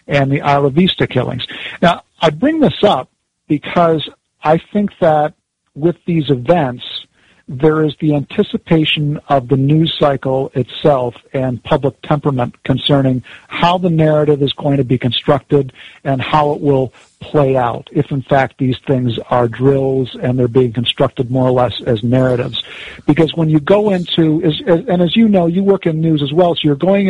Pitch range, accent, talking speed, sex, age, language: 135-170 Hz, American, 175 wpm, male, 50-69, English